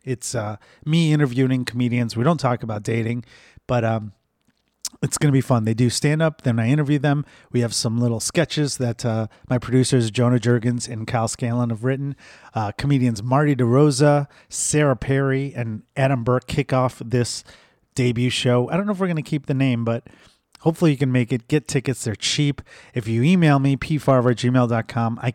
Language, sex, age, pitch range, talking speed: English, male, 30-49, 115-140 Hz, 190 wpm